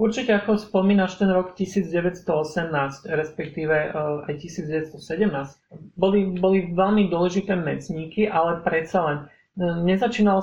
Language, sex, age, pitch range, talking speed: Slovak, male, 40-59, 160-190 Hz, 110 wpm